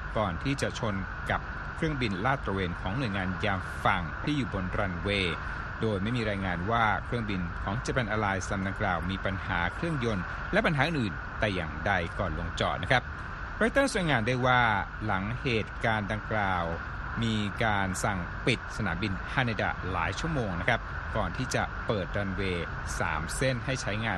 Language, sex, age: Thai, male, 60-79